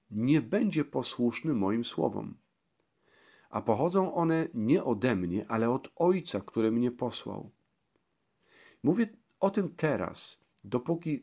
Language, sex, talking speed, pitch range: Polish, male, 120 wpm, 115-155 Hz